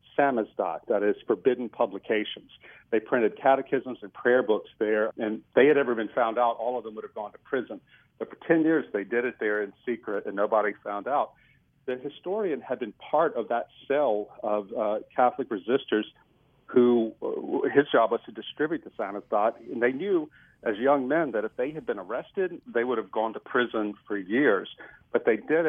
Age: 50-69